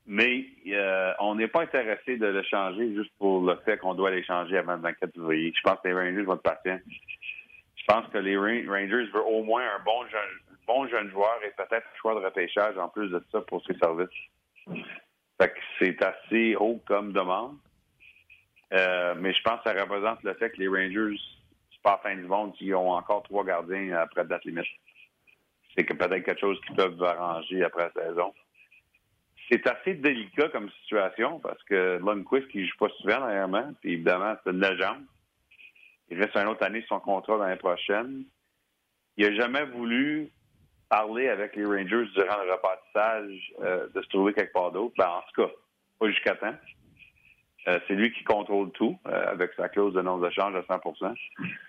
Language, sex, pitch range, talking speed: French, male, 95-115 Hz, 200 wpm